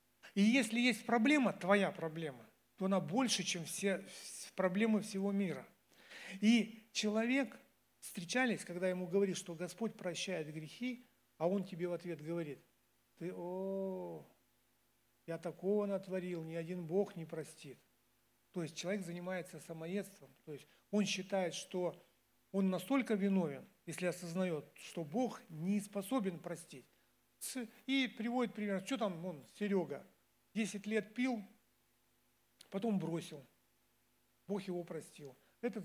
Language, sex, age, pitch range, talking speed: Russian, male, 60-79, 150-200 Hz, 125 wpm